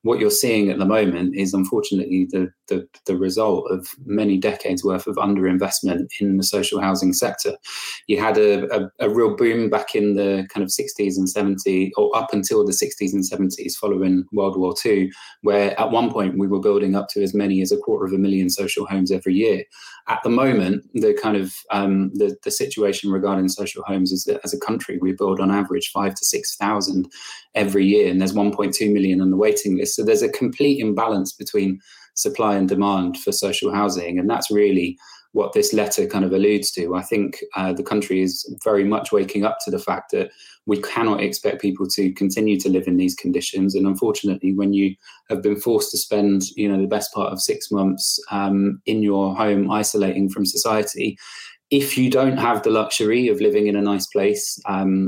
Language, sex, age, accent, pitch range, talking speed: English, male, 20-39, British, 95-105 Hz, 205 wpm